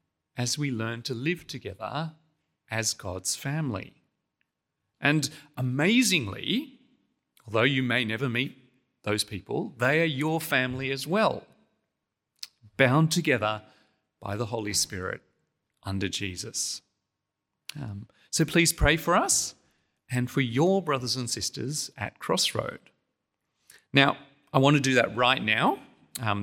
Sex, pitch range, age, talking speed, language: male, 105-145 Hz, 40-59, 125 wpm, English